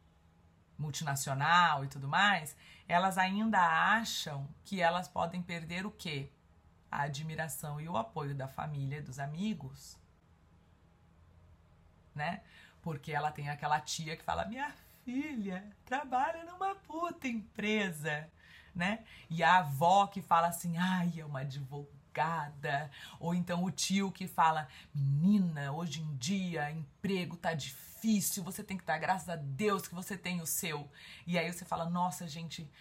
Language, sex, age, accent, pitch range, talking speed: Portuguese, female, 30-49, Brazilian, 150-195 Hz, 145 wpm